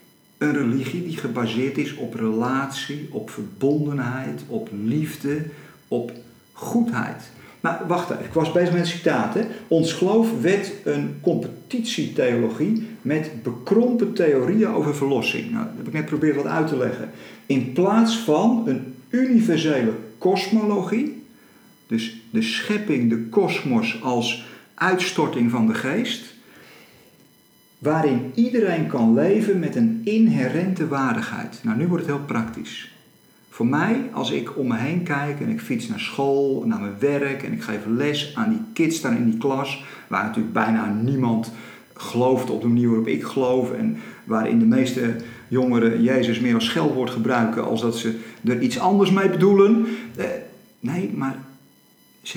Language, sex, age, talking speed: Dutch, male, 50-69, 150 wpm